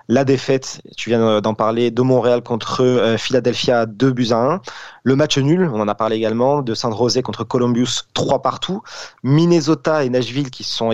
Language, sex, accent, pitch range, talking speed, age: French, male, French, 110-130 Hz, 185 wpm, 30-49